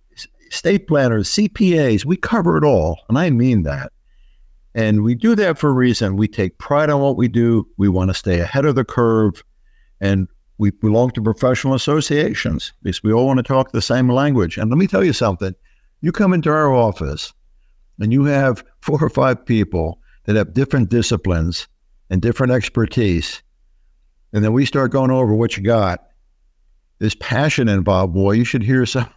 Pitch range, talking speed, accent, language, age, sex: 95-130 Hz, 180 wpm, American, English, 60-79, male